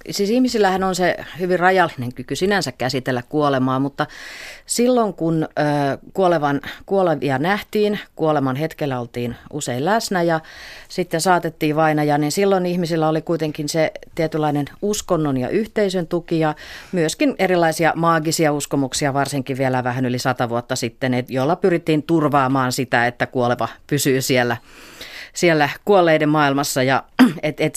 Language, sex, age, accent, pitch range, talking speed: Finnish, female, 40-59, native, 135-175 Hz, 135 wpm